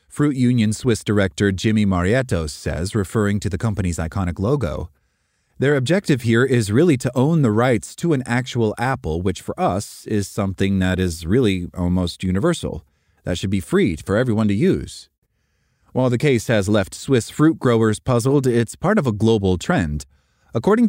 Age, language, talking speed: 30-49, English, 170 wpm